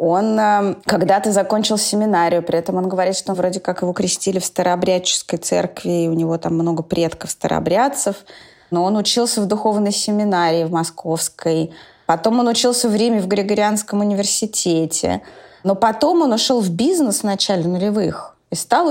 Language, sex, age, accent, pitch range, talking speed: Russian, female, 20-39, native, 180-220 Hz, 160 wpm